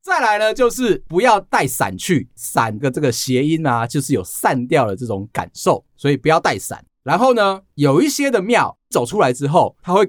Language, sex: Chinese, male